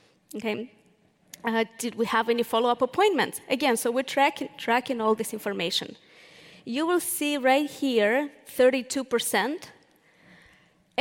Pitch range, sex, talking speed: 225-270 Hz, female, 115 wpm